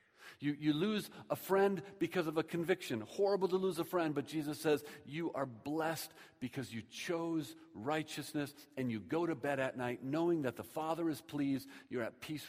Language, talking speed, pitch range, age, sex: English, 190 wpm, 120-180 Hz, 40-59, male